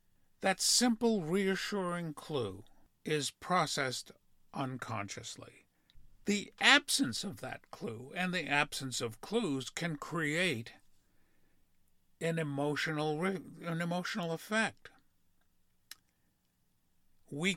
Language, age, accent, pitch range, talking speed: English, 60-79, American, 120-170 Hz, 80 wpm